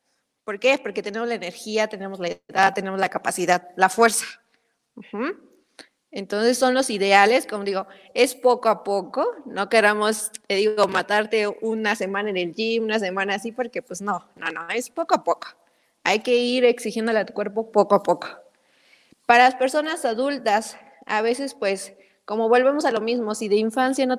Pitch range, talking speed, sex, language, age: 195-245 Hz, 180 wpm, female, Spanish, 20-39